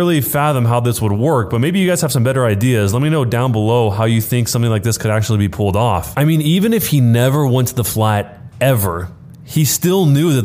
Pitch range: 110-140 Hz